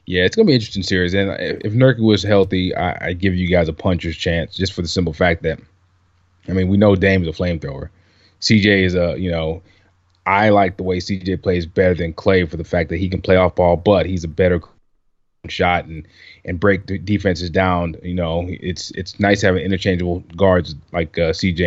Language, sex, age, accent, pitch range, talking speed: English, male, 20-39, American, 85-100 Hz, 220 wpm